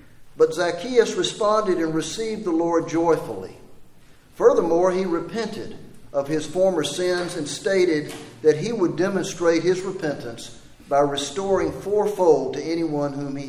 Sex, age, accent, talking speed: male, 50-69, American, 135 wpm